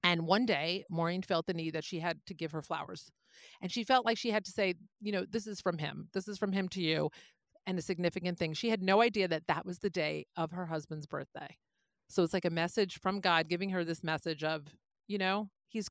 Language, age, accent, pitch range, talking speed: English, 40-59, American, 175-240 Hz, 250 wpm